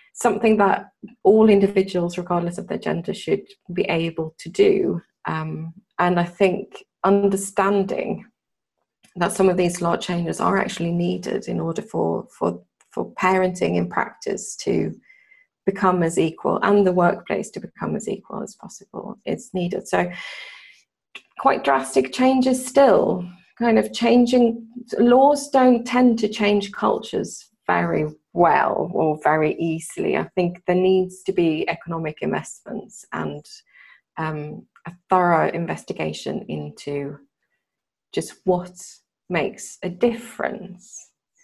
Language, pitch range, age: English, 170-220 Hz, 30-49